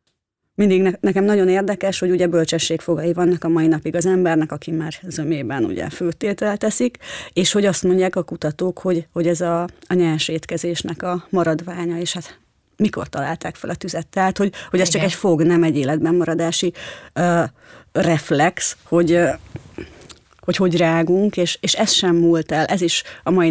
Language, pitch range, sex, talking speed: Hungarian, 160-180 Hz, female, 170 wpm